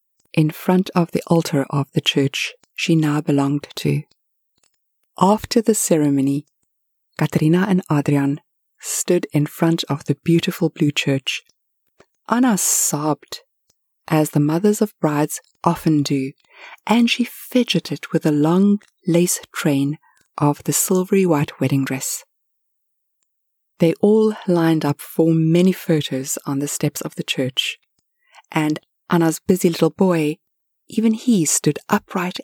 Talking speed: 130 wpm